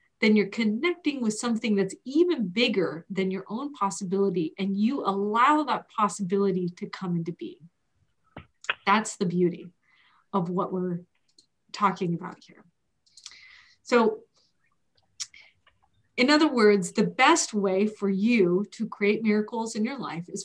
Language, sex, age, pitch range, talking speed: English, female, 30-49, 185-230 Hz, 135 wpm